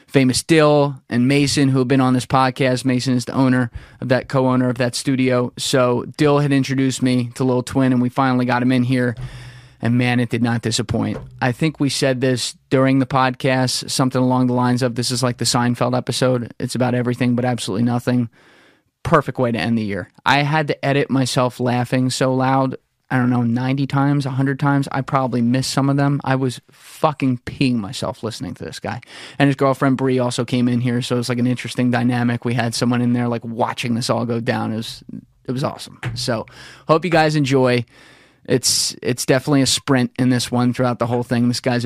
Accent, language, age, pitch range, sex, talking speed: American, English, 20-39, 120-135 Hz, male, 215 wpm